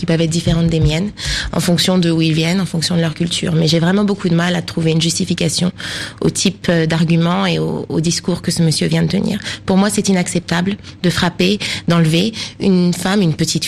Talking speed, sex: 225 wpm, female